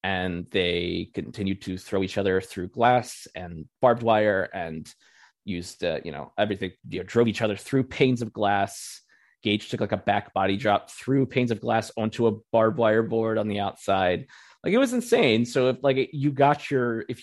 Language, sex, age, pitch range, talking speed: English, male, 20-39, 100-120 Hz, 200 wpm